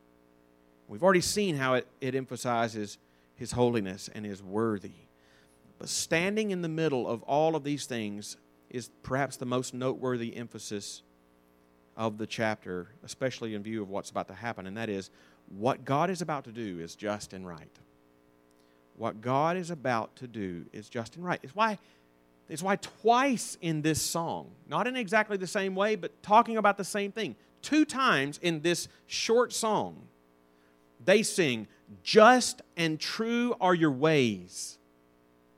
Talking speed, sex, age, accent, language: 160 wpm, male, 40-59, American, English